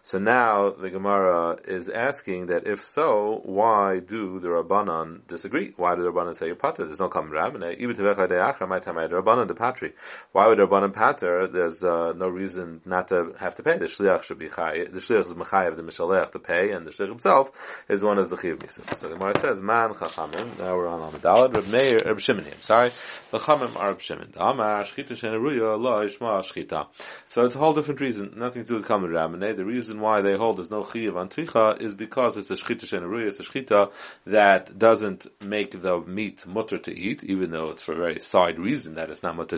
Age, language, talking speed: 30-49, English, 220 wpm